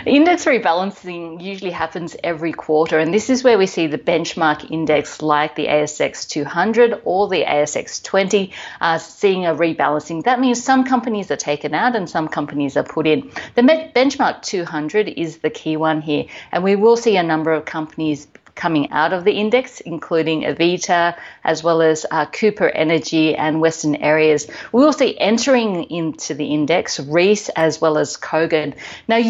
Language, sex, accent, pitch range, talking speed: English, female, Australian, 155-205 Hz, 170 wpm